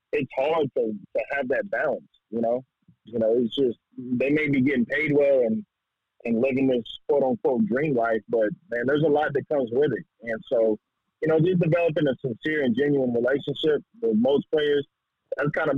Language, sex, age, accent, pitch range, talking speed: English, male, 30-49, American, 115-155 Hz, 200 wpm